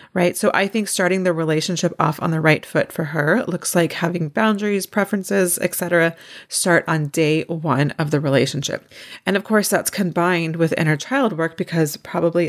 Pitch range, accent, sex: 150-180 Hz, American, female